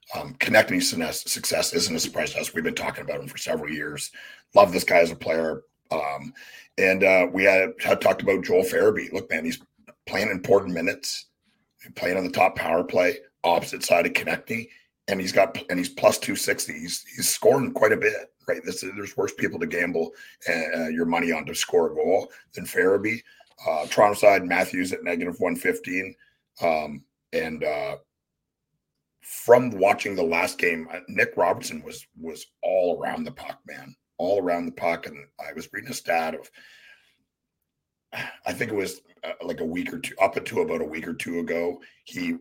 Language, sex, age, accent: English, male, 40-59, American